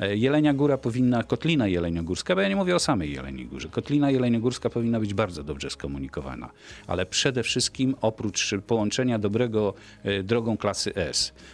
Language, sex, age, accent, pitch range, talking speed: Polish, male, 50-69, native, 95-120 Hz, 150 wpm